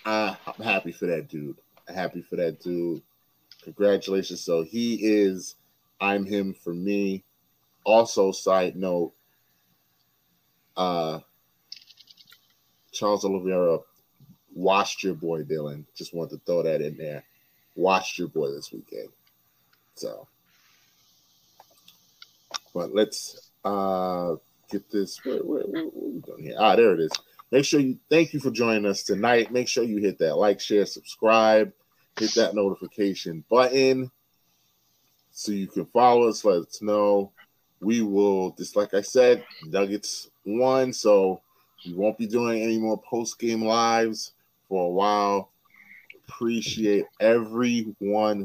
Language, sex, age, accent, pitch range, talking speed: English, male, 30-49, American, 95-115 Hz, 135 wpm